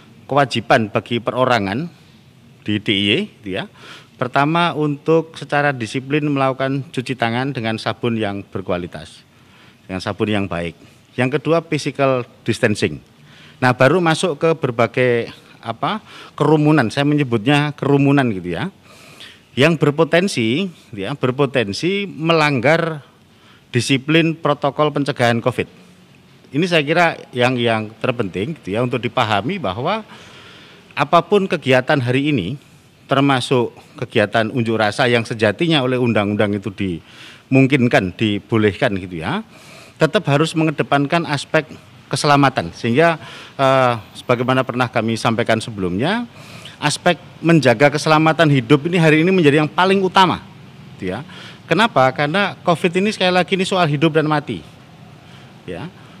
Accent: native